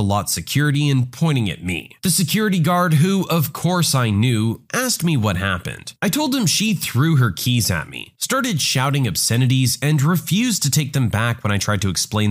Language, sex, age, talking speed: English, male, 30-49, 200 wpm